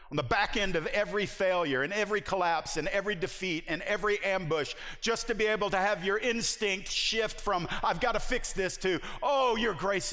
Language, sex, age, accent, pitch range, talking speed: English, male, 50-69, American, 135-185 Hz, 205 wpm